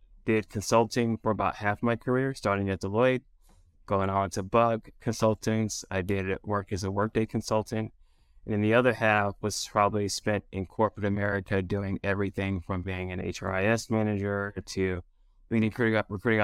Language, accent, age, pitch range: English, American, 20-39, 95-110 Hz